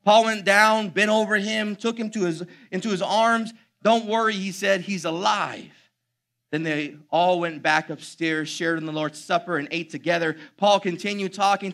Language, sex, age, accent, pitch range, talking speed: English, male, 30-49, American, 165-230 Hz, 185 wpm